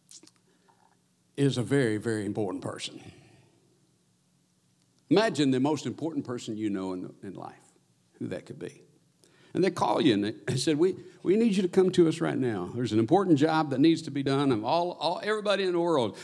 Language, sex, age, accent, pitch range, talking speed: English, male, 60-79, American, 120-170 Hz, 200 wpm